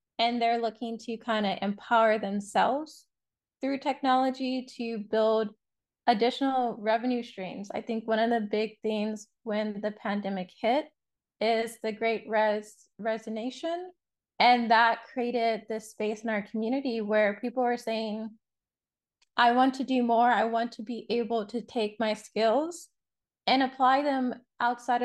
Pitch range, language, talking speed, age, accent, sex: 215-245 Hz, English, 145 wpm, 20-39, American, female